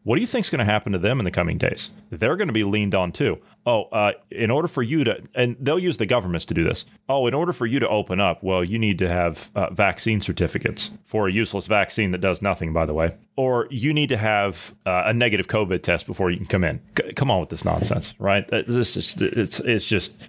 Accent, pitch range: American, 100-125 Hz